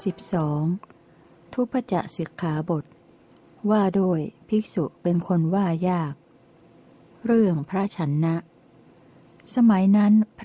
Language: Thai